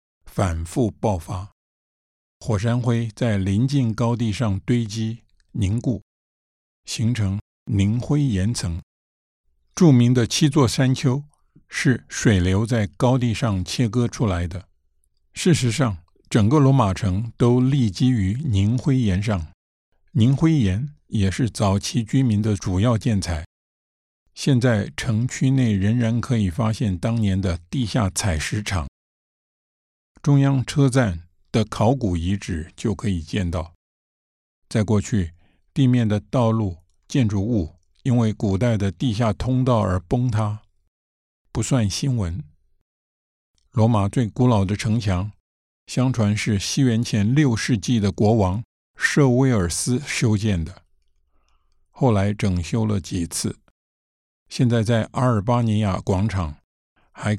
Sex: male